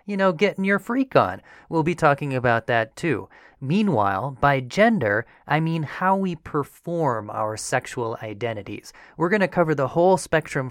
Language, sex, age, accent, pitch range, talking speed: English, male, 30-49, American, 125-180 Hz, 160 wpm